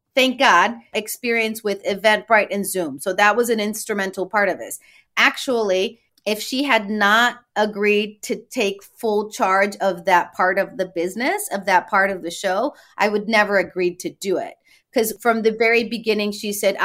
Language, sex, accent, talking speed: English, female, American, 180 wpm